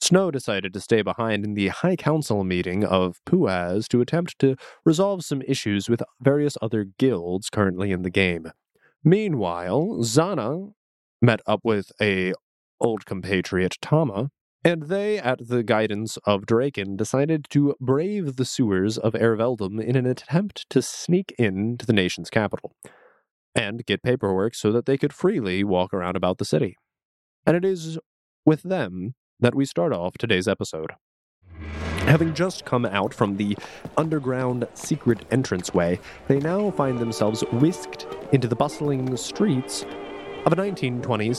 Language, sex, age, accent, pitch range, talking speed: English, male, 20-39, American, 100-145 Hz, 150 wpm